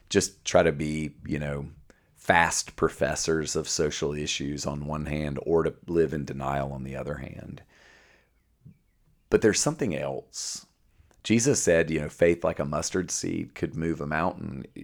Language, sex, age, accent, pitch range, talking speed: English, male, 40-59, American, 70-80 Hz, 160 wpm